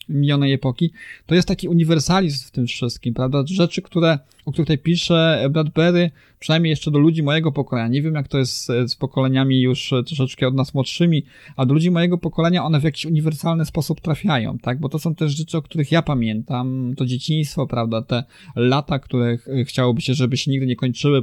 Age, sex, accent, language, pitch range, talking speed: 20-39, male, native, Polish, 125-155 Hz, 195 wpm